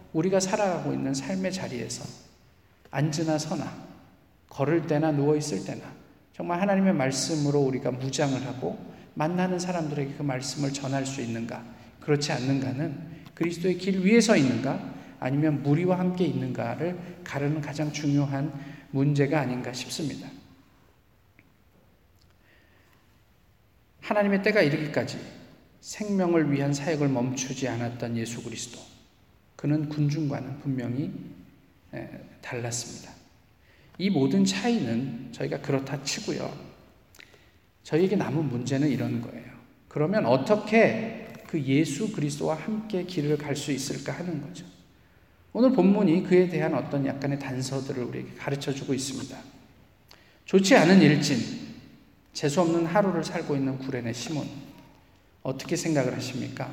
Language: Korean